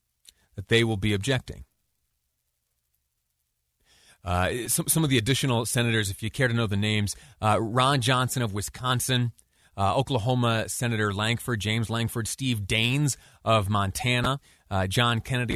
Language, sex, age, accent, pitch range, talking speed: English, male, 30-49, American, 100-125 Hz, 145 wpm